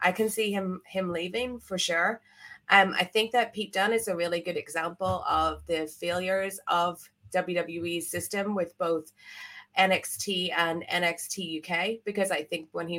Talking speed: 165 wpm